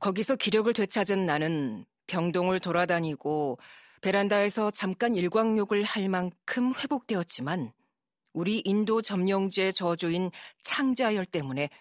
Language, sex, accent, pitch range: Korean, female, native, 165-210 Hz